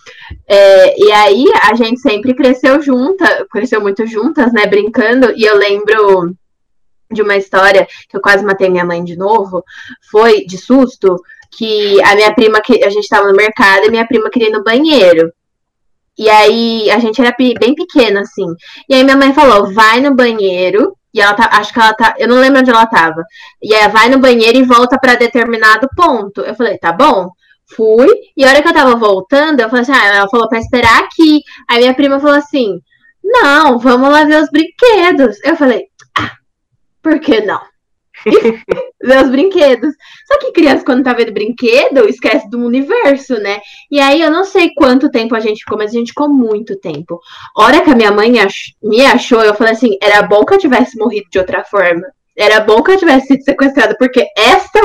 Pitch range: 210-285 Hz